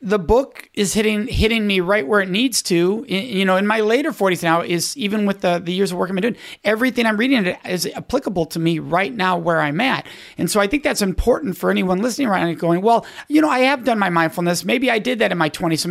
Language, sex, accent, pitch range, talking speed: English, male, American, 165-215 Hz, 270 wpm